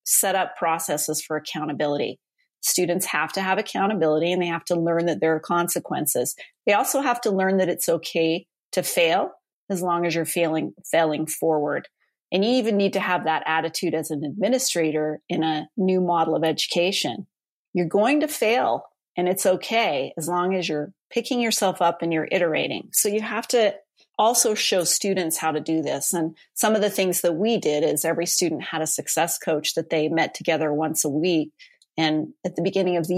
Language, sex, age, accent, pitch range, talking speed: English, female, 30-49, American, 160-195 Hz, 195 wpm